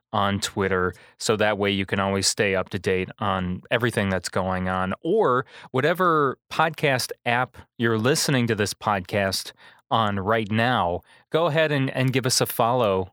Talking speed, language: 170 wpm, English